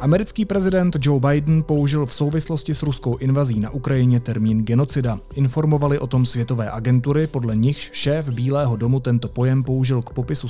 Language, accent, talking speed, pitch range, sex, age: Czech, native, 165 wpm, 120-145 Hz, male, 30-49